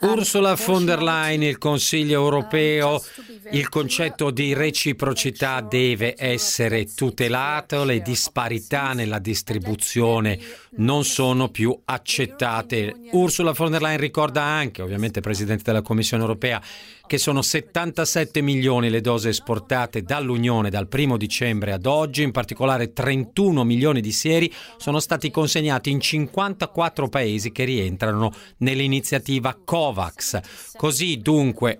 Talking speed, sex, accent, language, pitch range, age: 120 wpm, male, native, Italian, 115-150 Hz, 40-59